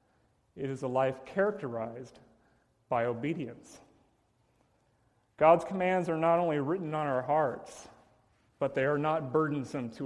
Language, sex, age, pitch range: English, male, 40-59, 125-165 Hz